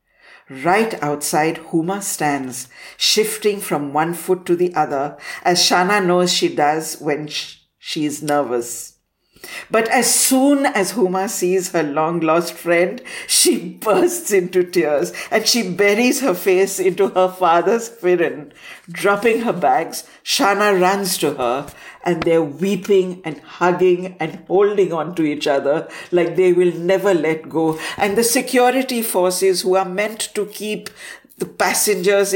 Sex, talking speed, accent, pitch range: female, 145 wpm, Indian, 155-195 Hz